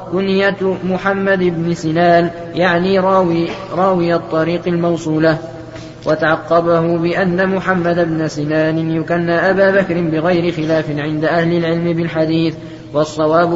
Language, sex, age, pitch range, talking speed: Arabic, male, 20-39, 160-175 Hz, 105 wpm